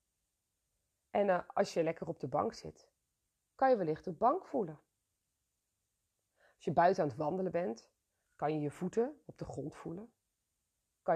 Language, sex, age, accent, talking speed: Dutch, female, 30-49, Dutch, 160 wpm